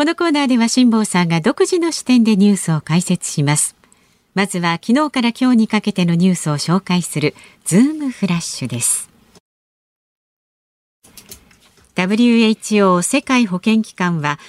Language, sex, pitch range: Japanese, female, 175-250 Hz